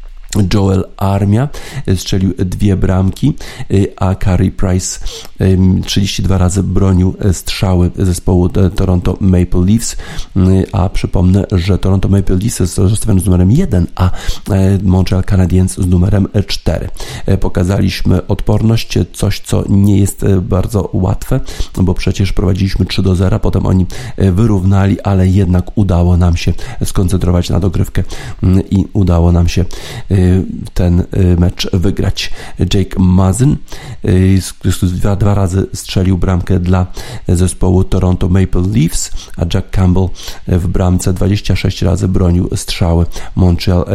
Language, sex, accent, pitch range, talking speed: Polish, male, native, 90-100 Hz, 115 wpm